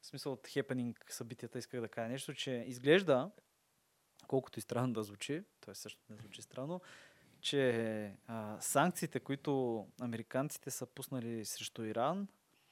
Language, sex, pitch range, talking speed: Bulgarian, male, 120-145 Hz, 145 wpm